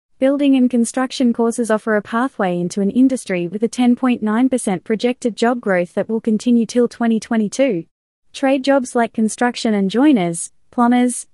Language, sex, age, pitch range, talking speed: English, female, 20-39, 200-255 Hz, 150 wpm